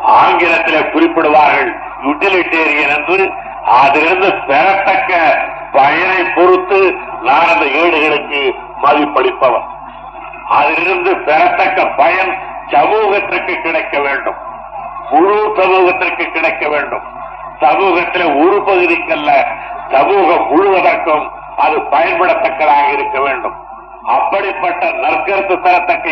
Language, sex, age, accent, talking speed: Tamil, male, 60-79, native, 75 wpm